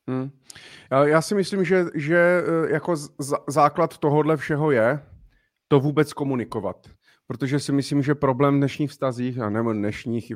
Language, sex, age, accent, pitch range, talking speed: Czech, male, 30-49, native, 115-145 Hz, 150 wpm